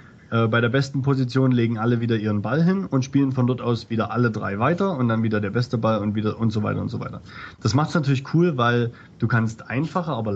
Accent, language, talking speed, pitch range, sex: German, German, 250 wpm, 115-135 Hz, male